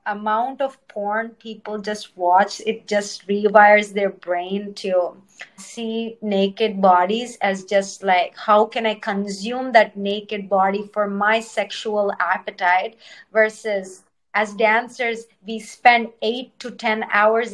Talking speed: 130 wpm